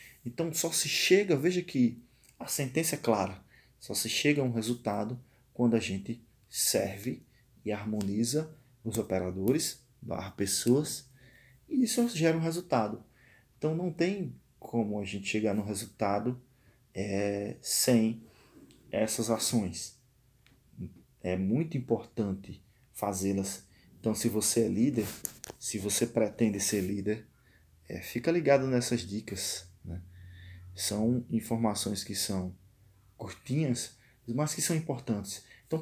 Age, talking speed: 20-39, 120 wpm